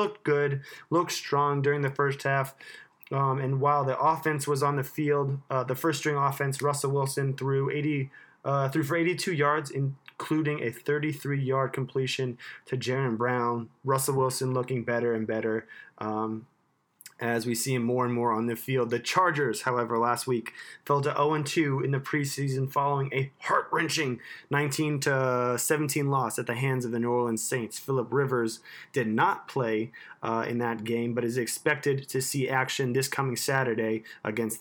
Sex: male